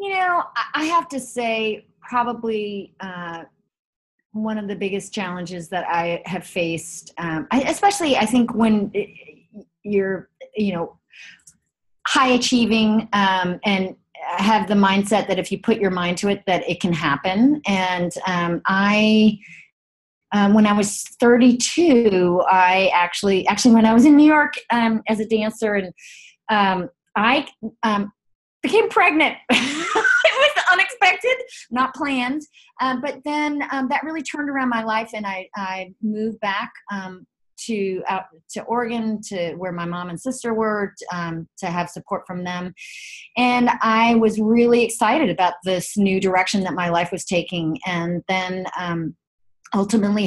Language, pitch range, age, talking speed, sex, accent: English, 180-245 Hz, 30-49, 150 wpm, female, American